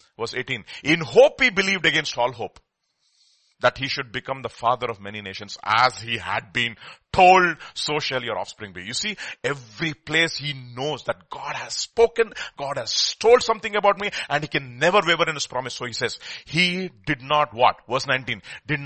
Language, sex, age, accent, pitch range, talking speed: English, male, 40-59, Indian, 125-170 Hz, 195 wpm